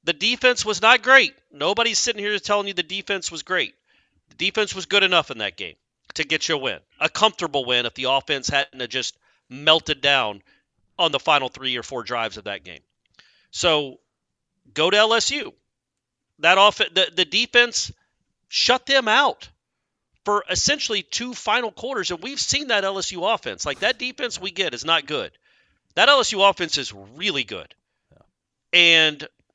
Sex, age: male, 40-59